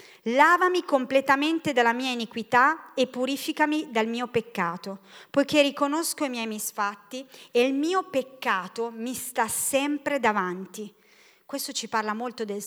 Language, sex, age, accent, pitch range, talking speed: Italian, female, 30-49, native, 210-270 Hz, 135 wpm